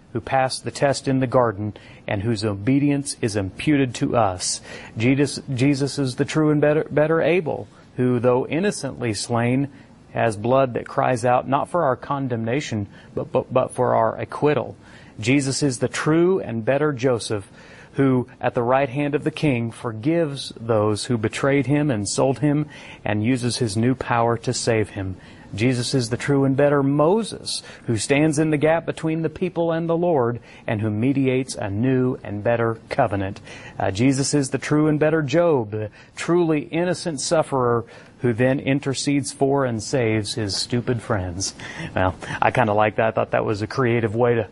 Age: 30-49